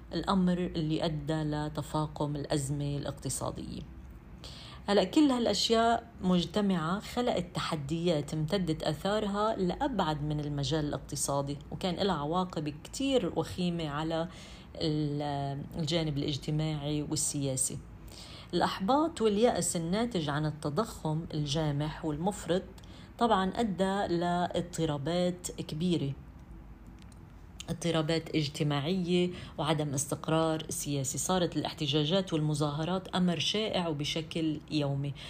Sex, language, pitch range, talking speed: female, Arabic, 150-185 Hz, 85 wpm